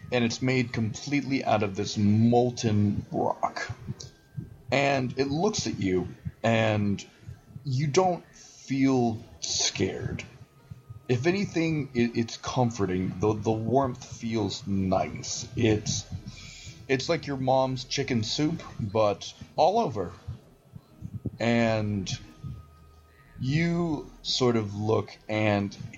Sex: male